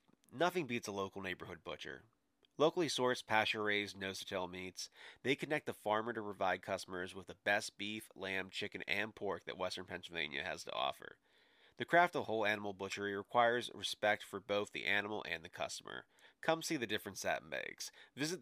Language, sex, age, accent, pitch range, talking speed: English, male, 30-49, American, 100-125 Hz, 175 wpm